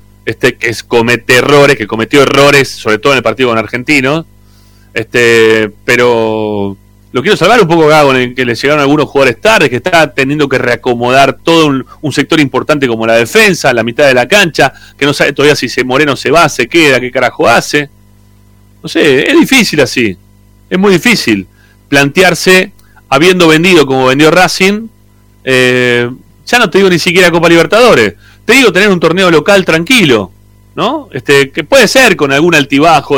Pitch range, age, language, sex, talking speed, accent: 110-165 Hz, 30-49, Spanish, male, 180 wpm, Argentinian